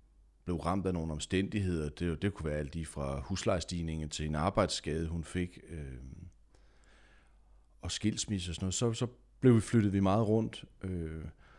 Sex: male